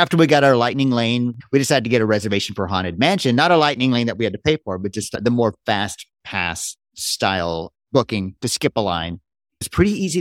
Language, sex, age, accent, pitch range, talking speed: English, male, 30-49, American, 105-130 Hz, 235 wpm